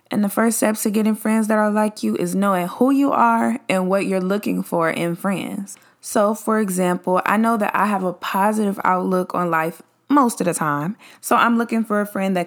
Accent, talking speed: American, 225 wpm